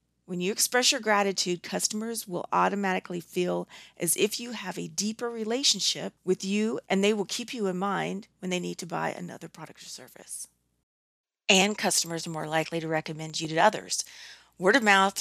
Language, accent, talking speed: English, American, 185 wpm